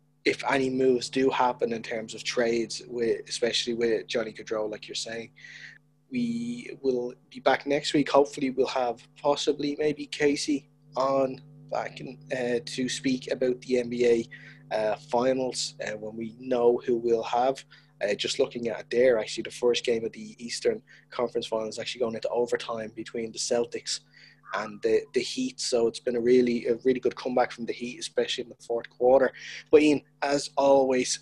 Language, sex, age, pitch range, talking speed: English, male, 20-39, 120-145 Hz, 180 wpm